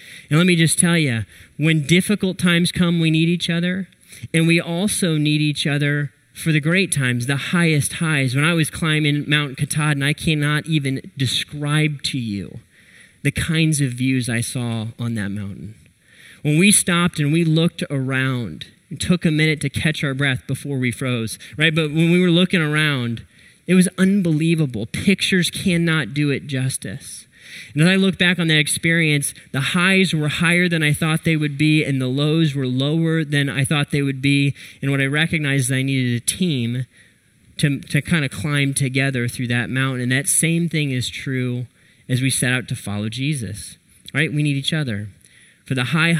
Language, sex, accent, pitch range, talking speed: English, male, American, 130-165 Hz, 195 wpm